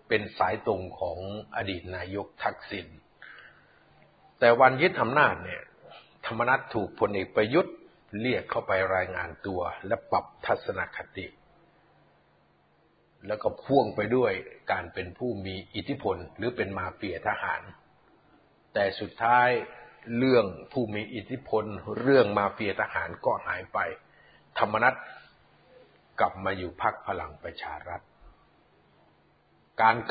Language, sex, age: Thai, male, 50-69